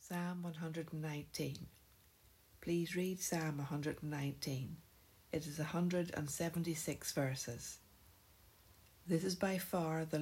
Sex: female